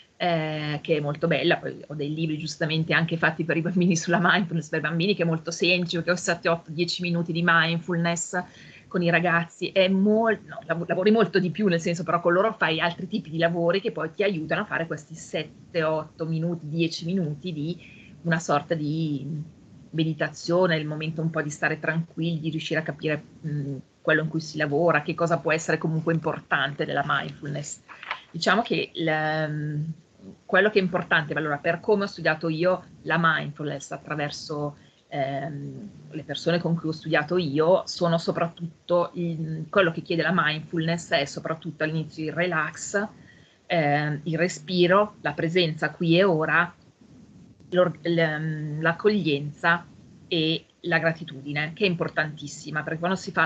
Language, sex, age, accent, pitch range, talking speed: Italian, female, 30-49, native, 155-175 Hz, 165 wpm